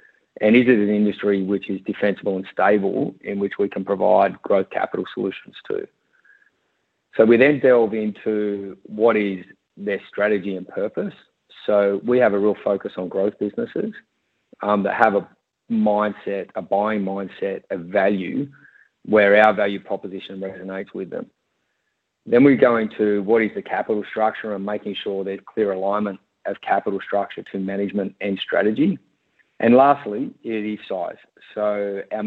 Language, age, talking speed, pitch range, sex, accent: English, 30-49, 160 wpm, 100-110 Hz, male, Australian